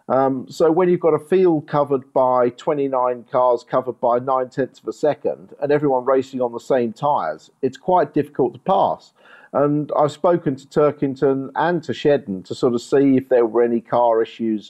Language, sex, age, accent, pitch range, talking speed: English, male, 50-69, British, 120-150 Hz, 195 wpm